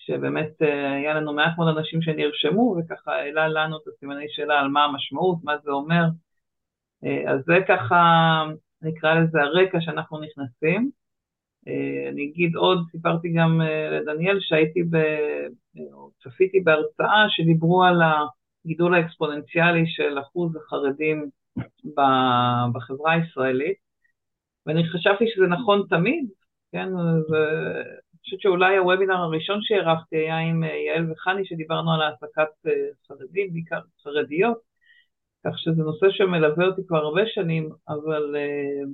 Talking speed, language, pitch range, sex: 120 wpm, Hebrew, 150-180 Hz, female